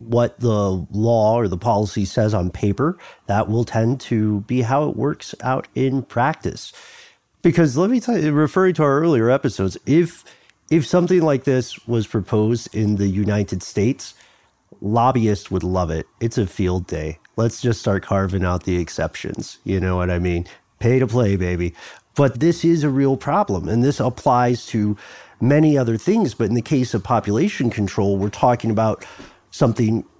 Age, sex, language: 40-59, male, English